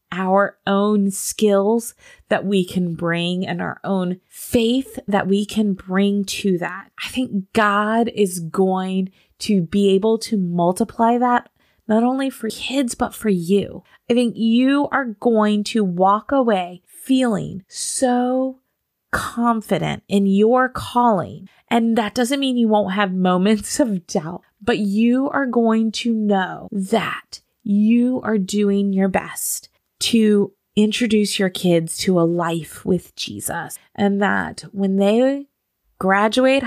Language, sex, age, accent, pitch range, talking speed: English, female, 20-39, American, 190-235 Hz, 140 wpm